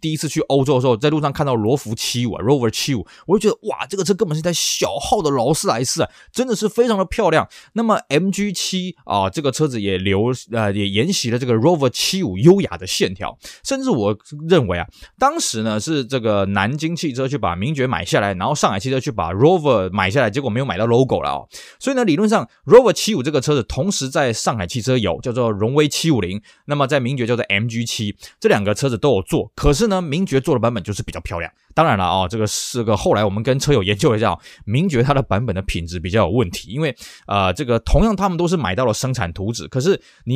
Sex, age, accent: male, 20-39, native